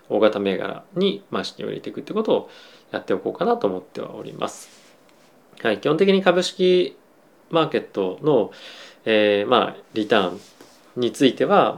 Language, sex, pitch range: Japanese, male, 105-155 Hz